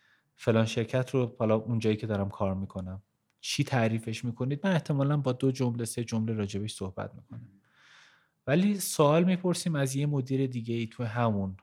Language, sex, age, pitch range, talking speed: English, male, 30-49, 110-135 Hz, 165 wpm